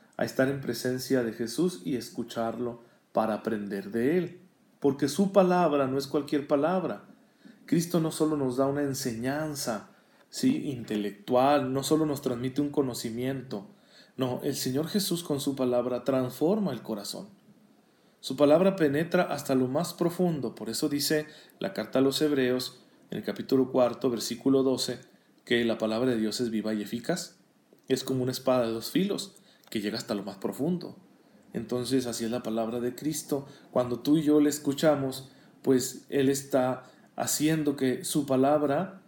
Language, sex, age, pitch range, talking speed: Spanish, male, 40-59, 125-155 Hz, 165 wpm